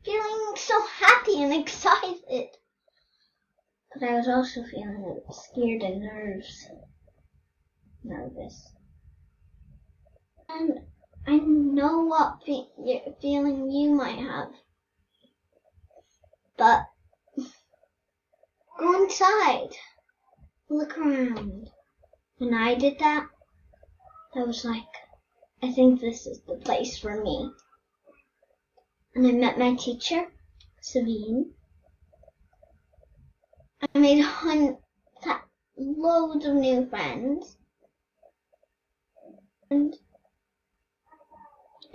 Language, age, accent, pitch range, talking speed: English, 10-29, American, 230-305 Hz, 80 wpm